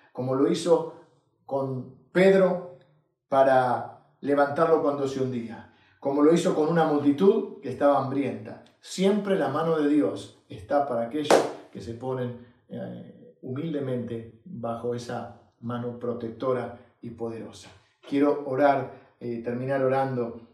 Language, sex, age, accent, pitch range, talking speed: Spanish, male, 40-59, Argentinian, 120-145 Hz, 125 wpm